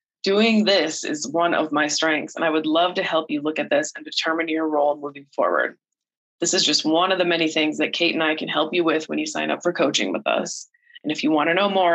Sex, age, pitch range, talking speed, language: female, 20-39, 155-200 Hz, 270 wpm, English